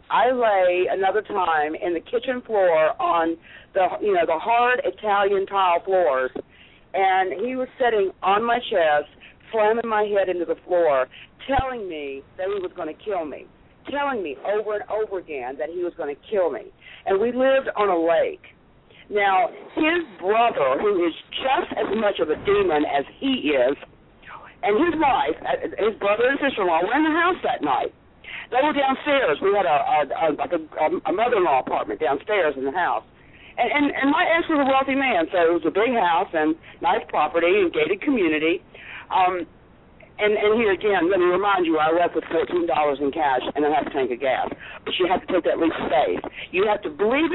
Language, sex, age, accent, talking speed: English, female, 50-69, American, 200 wpm